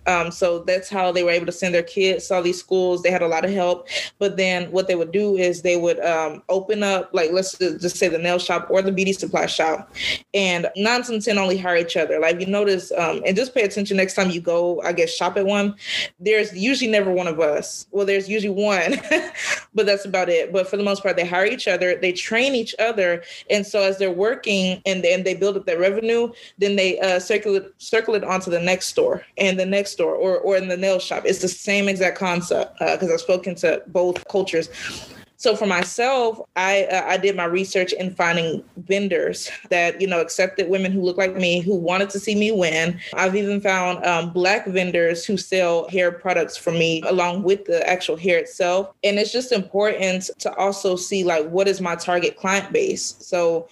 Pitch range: 180-200 Hz